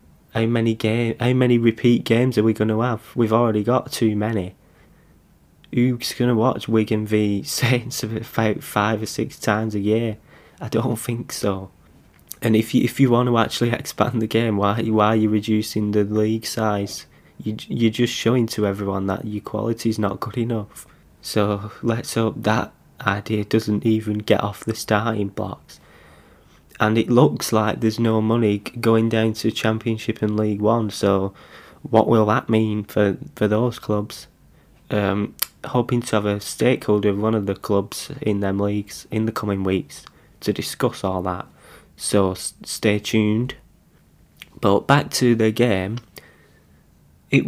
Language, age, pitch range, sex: English, 20-39, 105-115 Hz, male